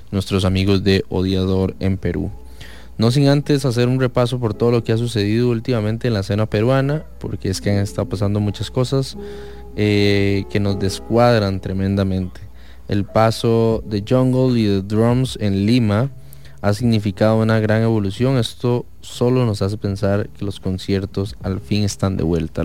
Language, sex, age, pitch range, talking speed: English, male, 20-39, 95-120 Hz, 165 wpm